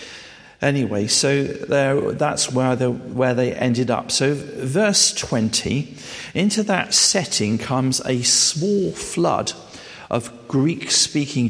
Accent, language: British, English